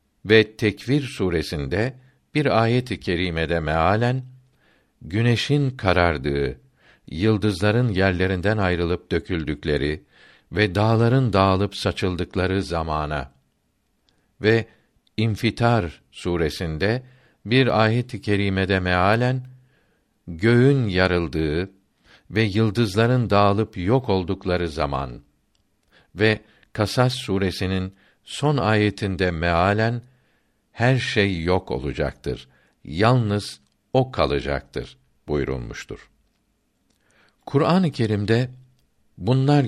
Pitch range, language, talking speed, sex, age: 85-115 Hz, Turkish, 75 wpm, male, 60-79